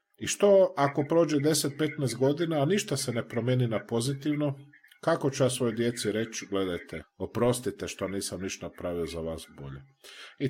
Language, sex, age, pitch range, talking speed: Croatian, male, 40-59, 100-140 Hz, 165 wpm